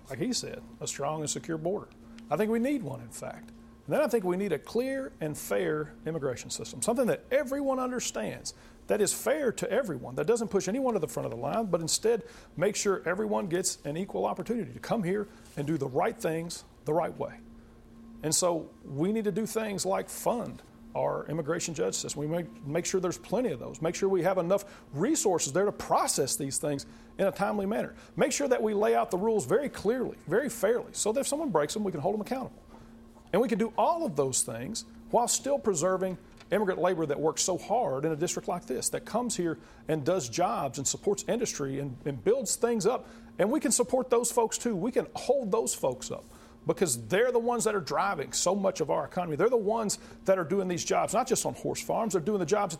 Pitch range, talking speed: 155-230 Hz, 230 wpm